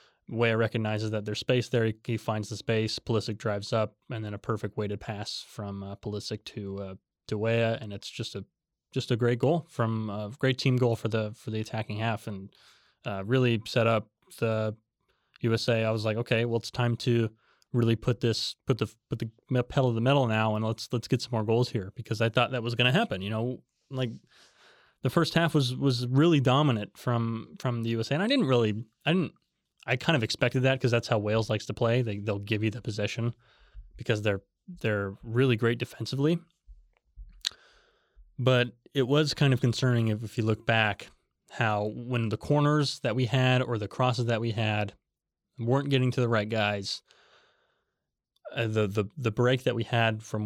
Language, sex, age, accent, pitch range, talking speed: English, male, 20-39, American, 110-125 Hz, 205 wpm